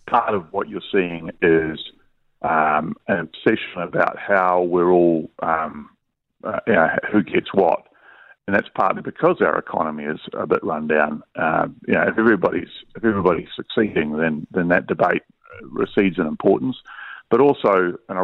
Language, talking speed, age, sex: English, 165 wpm, 40-59, male